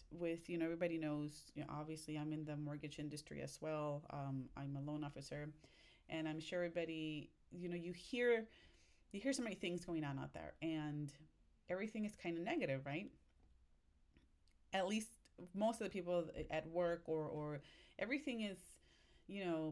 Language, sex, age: English, female, 30-49